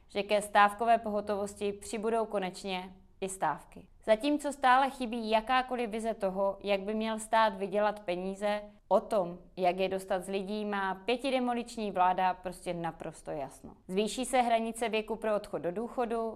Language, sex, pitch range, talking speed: Czech, female, 190-225 Hz, 150 wpm